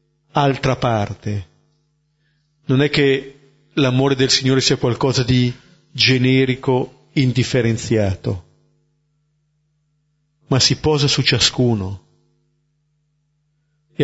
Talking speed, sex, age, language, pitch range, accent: 80 wpm, male, 40-59, Italian, 125-150 Hz, native